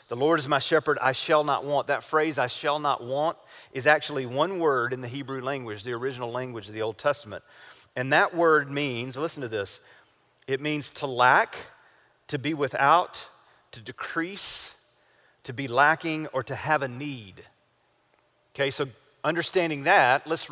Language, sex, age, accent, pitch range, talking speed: English, male, 40-59, American, 135-155 Hz, 175 wpm